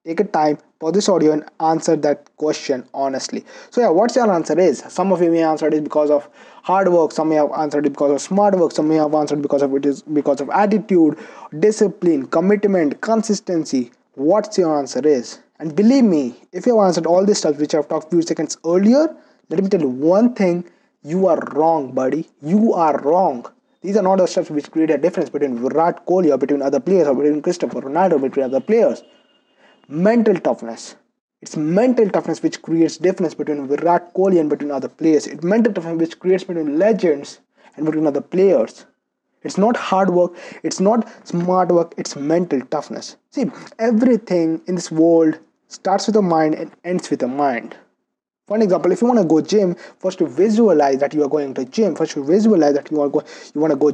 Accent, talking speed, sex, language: Indian, 210 wpm, male, English